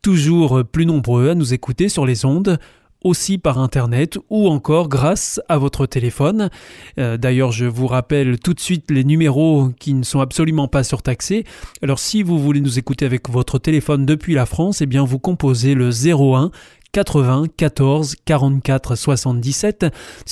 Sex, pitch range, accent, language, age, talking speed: male, 130-165 Hz, French, French, 20-39, 155 wpm